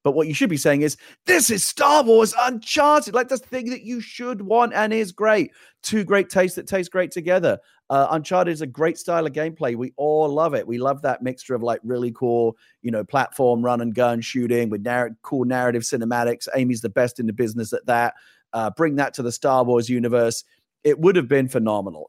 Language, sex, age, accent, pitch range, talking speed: English, male, 30-49, British, 110-145 Hz, 225 wpm